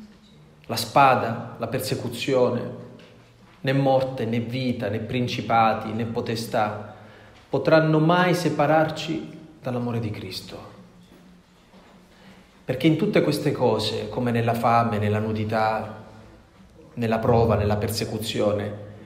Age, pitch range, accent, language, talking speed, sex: 30-49, 110-160 Hz, native, Italian, 100 wpm, male